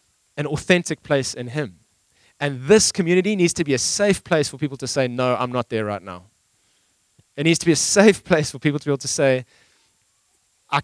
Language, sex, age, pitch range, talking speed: English, male, 20-39, 115-165 Hz, 215 wpm